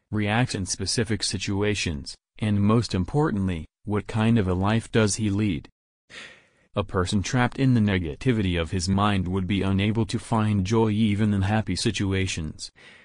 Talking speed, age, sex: 155 wpm, 30-49, male